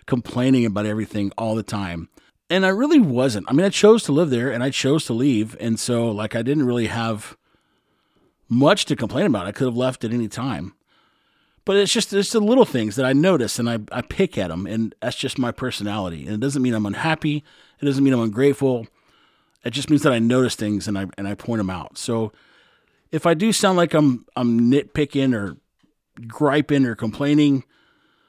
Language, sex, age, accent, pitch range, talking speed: English, male, 30-49, American, 110-145 Hz, 210 wpm